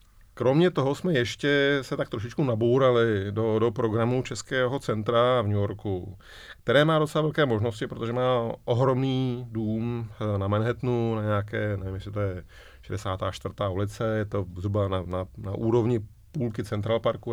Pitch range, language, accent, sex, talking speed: 105-130 Hz, Czech, native, male, 155 wpm